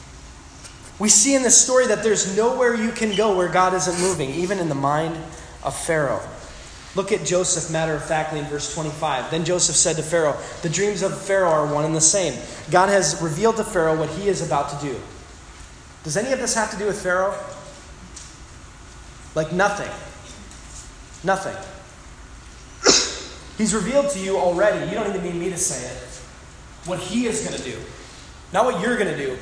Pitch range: 165-220 Hz